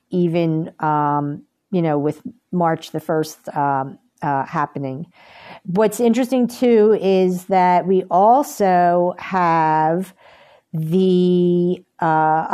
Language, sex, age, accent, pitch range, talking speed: English, female, 50-69, American, 160-195 Hz, 100 wpm